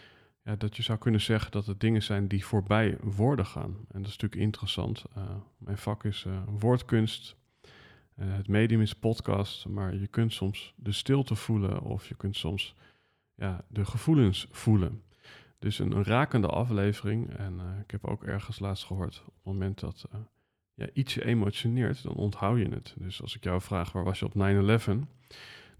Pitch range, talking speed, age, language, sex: 100-115 Hz, 185 wpm, 40-59, Dutch, male